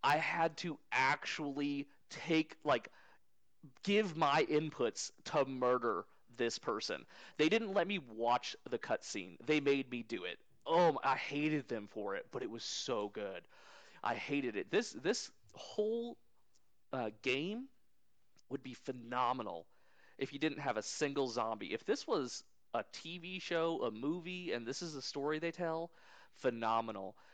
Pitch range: 125-155 Hz